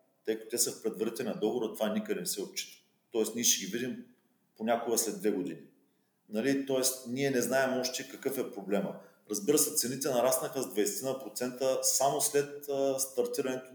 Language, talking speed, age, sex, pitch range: Bulgarian, 165 wpm, 40-59, male, 110-140 Hz